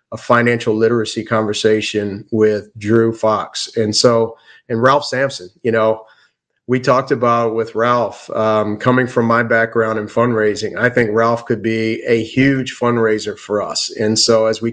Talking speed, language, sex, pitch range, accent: 165 wpm, English, male, 110-120 Hz, American